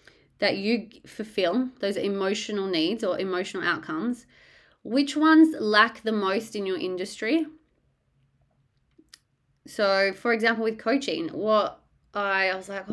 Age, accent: 20-39, Australian